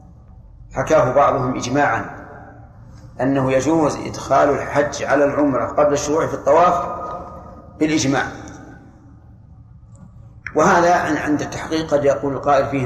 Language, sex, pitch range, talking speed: Arabic, male, 120-155 Hz, 100 wpm